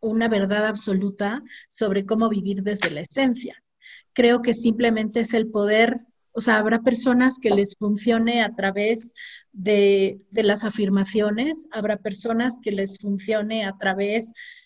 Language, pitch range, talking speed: Spanish, 205-240 Hz, 145 wpm